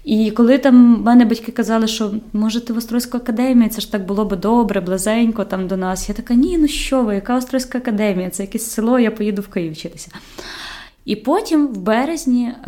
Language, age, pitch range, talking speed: Ukrainian, 20-39, 195-240 Hz, 200 wpm